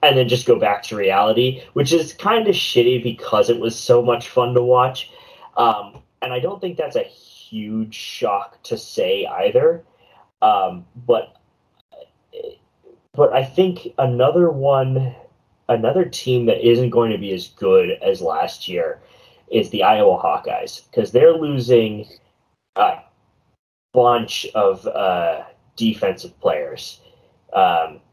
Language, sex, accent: English, male, American